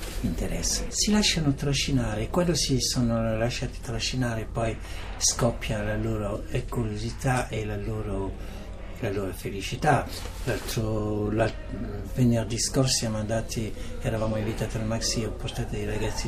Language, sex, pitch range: Italian, male, 100-120 Hz